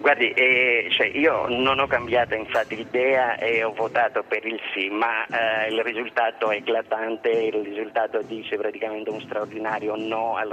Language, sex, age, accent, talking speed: Italian, male, 30-49, native, 165 wpm